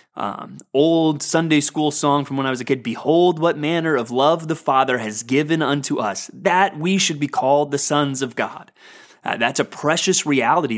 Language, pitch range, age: English, 130-165 Hz, 30-49